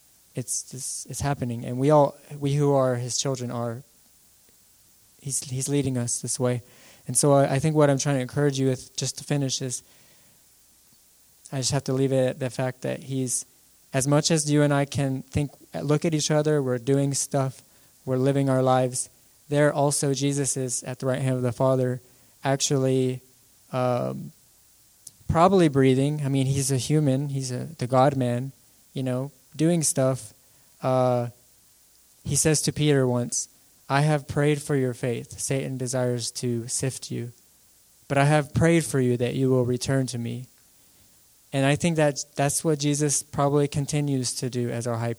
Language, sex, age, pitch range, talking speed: English, male, 20-39, 125-145 Hz, 180 wpm